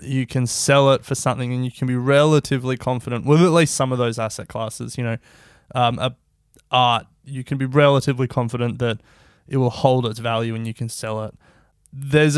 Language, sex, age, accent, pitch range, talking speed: English, male, 20-39, Australian, 115-140 Hz, 205 wpm